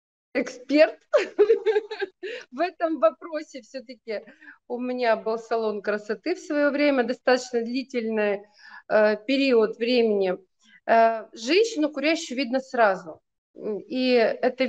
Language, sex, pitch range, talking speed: Russian, female, 220-285 Hz, 100 wpm